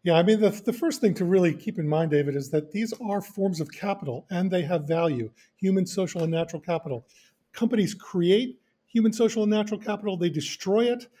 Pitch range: 145-190 Hz